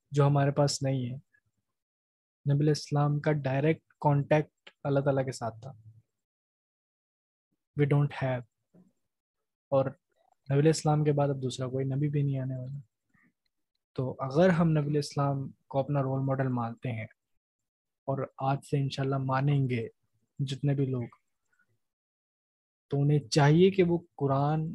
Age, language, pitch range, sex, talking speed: 20-39, Urdu, 130-155 Hz, male, 140 wpm